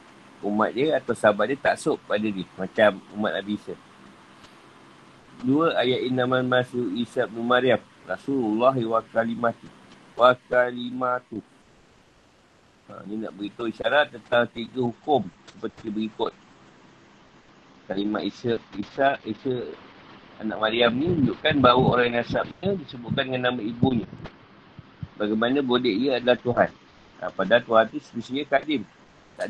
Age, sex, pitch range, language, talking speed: 50-69, male, 105-130 Hz, Malay, 120 wpm